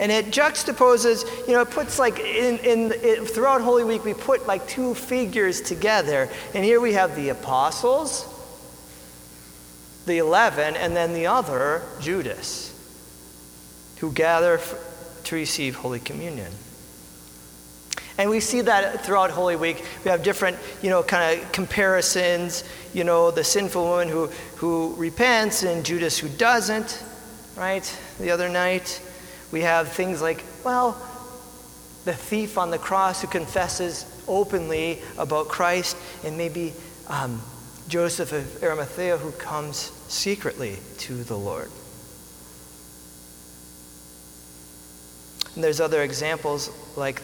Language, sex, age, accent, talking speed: English, male, 40-59, American, 130 wpm